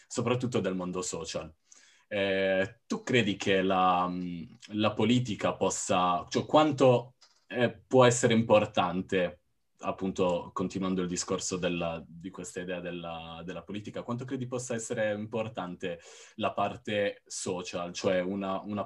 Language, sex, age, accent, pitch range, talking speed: Italian, male, 20-39, native, 90-115 Hz, 125 wpm